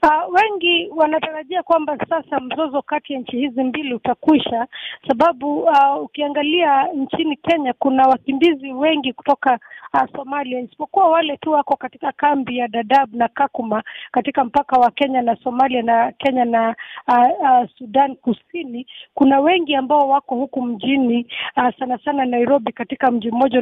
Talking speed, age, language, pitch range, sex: 150 wpm, 40-59, Swahili, 250-290 Hz, female